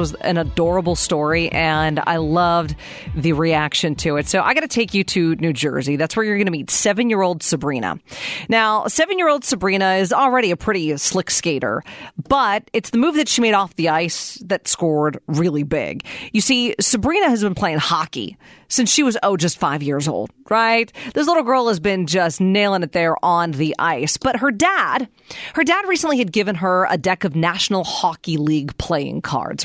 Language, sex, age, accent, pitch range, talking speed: English, female, 40-59, American, 170-265 Hz, 200 wpm